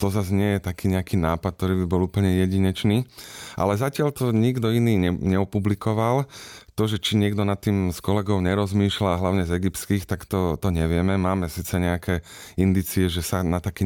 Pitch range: 90-110 Hz